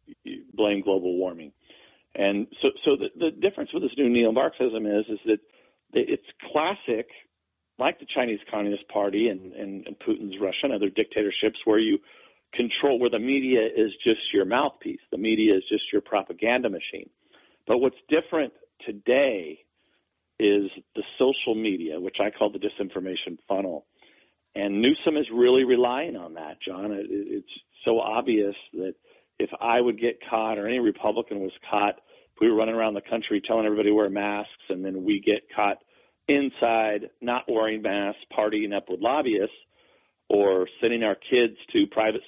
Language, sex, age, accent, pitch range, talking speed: English, male, 50-69, American, 105-145 Hz, 165 wpm